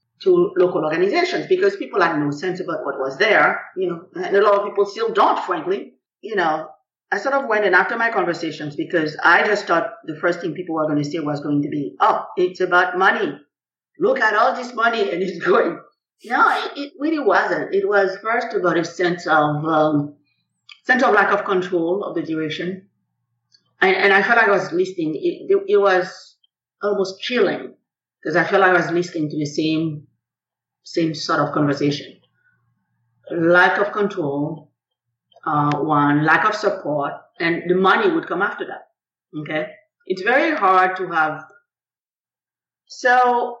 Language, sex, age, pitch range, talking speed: English, female, 50-69, 155-225 Hz, 180 wpm